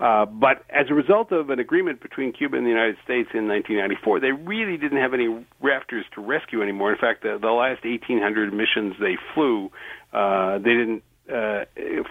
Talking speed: 190 wpm